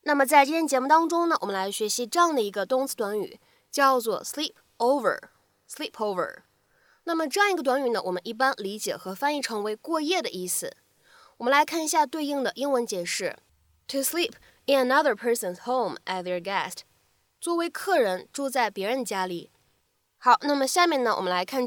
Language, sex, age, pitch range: Chinese, female, 20-39, 215-300 Hz